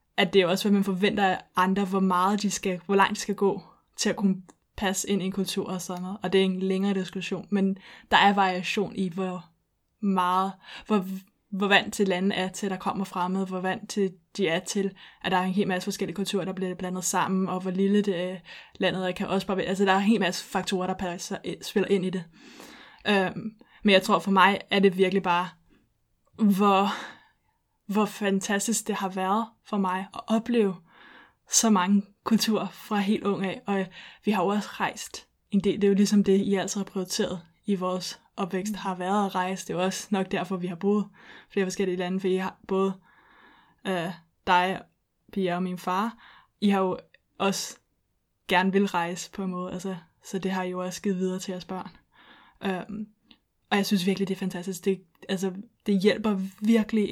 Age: 20-39